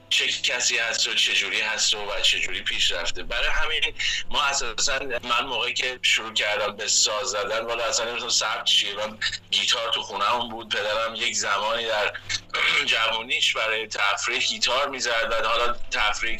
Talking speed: 180 wpm